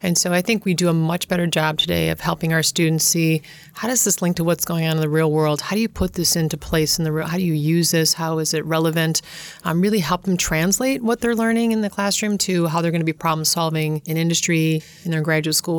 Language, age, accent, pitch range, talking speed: English, 30-49, American, 160-180 Hz, 275 wpm